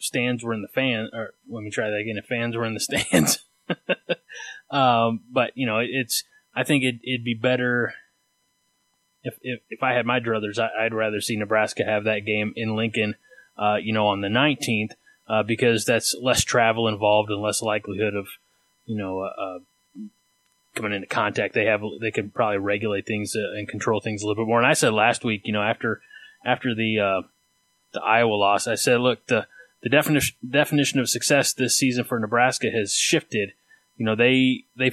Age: 20-39